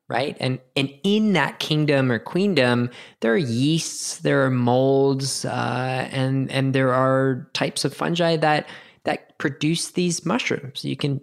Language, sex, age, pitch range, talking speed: English, male, 20-39, 120-150 Hz, 155 wpm